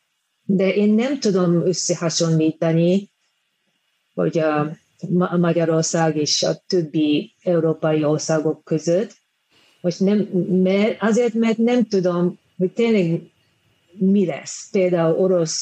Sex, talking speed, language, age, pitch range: female, 115 wpm, Hungarian, 40-59, 165-210 Hz